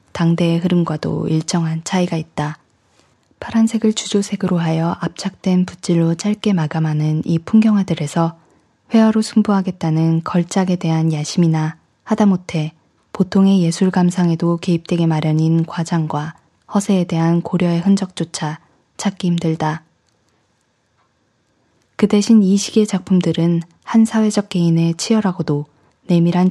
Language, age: Korean, 20-39